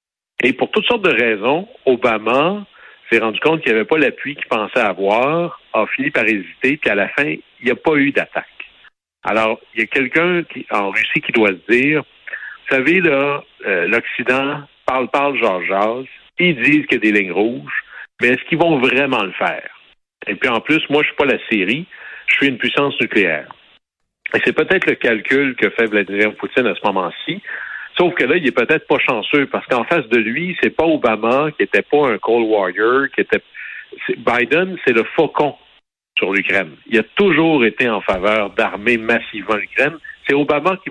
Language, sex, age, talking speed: French, male, 60-79, 205 wpm